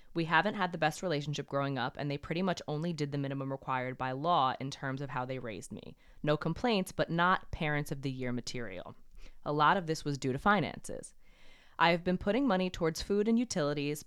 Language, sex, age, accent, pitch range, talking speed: English, female, 20-39, American, 140-170 Hz, 220 wpm